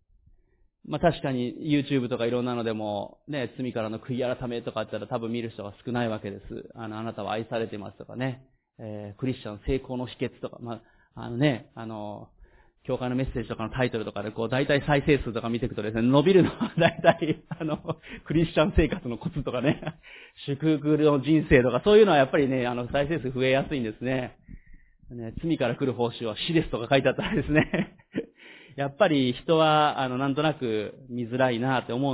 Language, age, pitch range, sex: Japanese, 30-49, 120-155 Hz, male